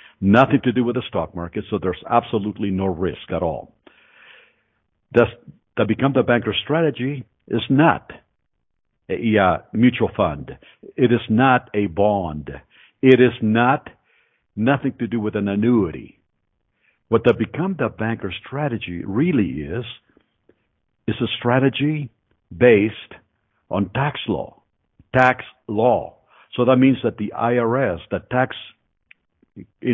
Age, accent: 60-79, American